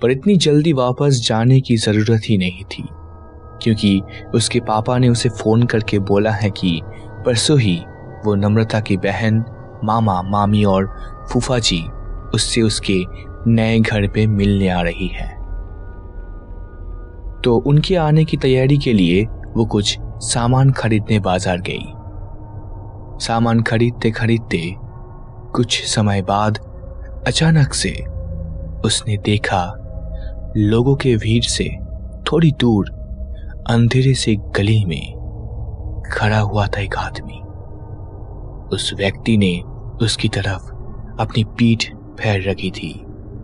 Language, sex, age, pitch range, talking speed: Hindi, male, 20-39, 95-115 Hz, 120 wpm